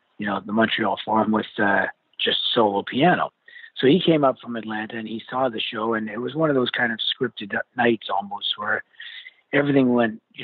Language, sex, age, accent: English, male, 50-69, American